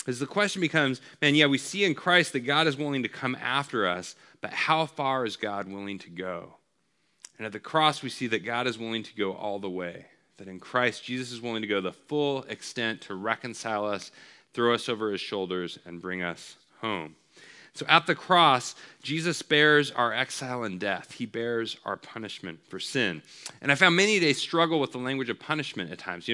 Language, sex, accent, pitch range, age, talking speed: English, male, American, 105-145 Hz, 30-49, 215 wpm